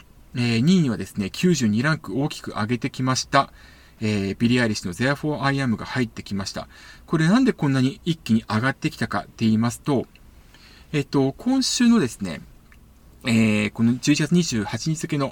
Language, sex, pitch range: Japanese, male, 115-170 Hz